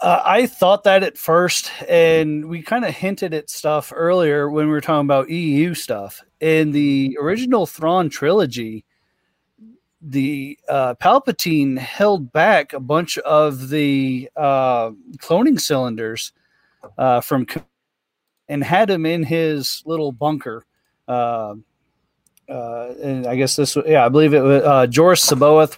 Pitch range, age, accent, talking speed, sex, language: 135-170 Hz, 40-59, American, 145 wpm, male, English